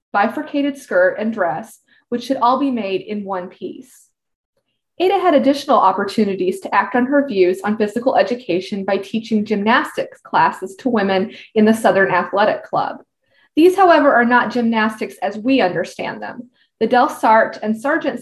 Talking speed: 160 wpm